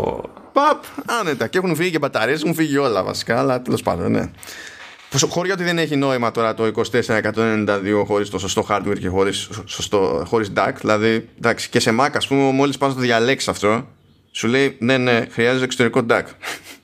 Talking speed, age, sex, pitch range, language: 180 wpm, 20-39, male, 105-145 Hz, Greek